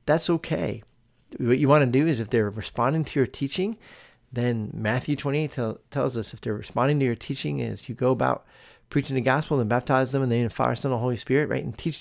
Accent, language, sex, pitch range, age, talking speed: American, English, male, 115-145 Hz, 40-59, 265 wpm